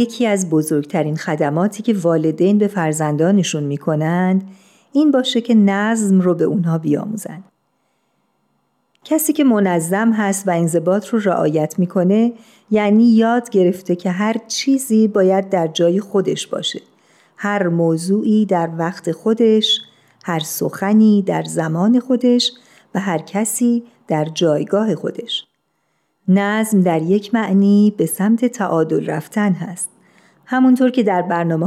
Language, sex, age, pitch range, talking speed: Persian, female, 50-69, 175-225 Hz, 125 wpm